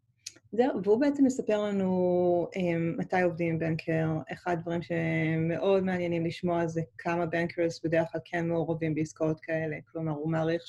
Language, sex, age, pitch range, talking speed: Hebrew, female, 20-39, 165-200 Hz, 145 wpm